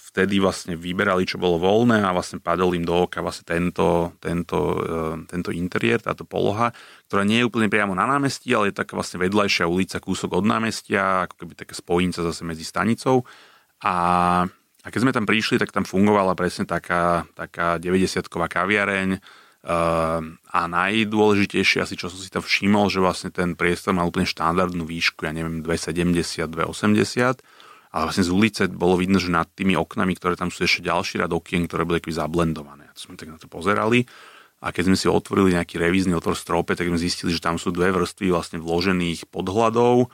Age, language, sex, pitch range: 30-49, Slovak, male, 85-95 Hz